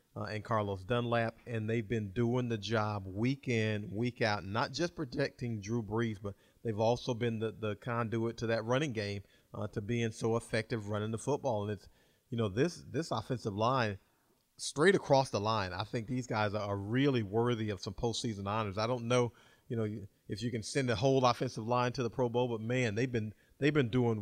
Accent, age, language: American, 40-59, English